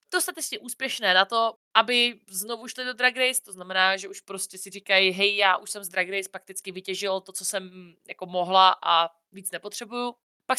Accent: native